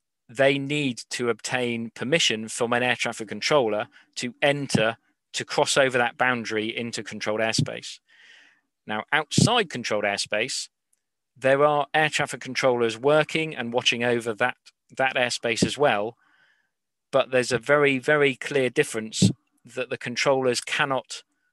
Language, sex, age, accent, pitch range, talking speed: English, male, 40-59, British, 115-135 Hz, 135 wpm